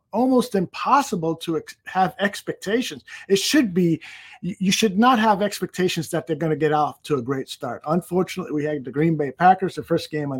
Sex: male